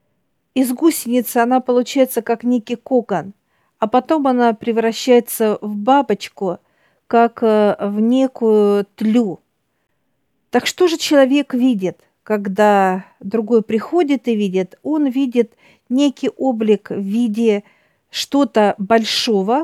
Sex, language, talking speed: female, Russian, 105 wpm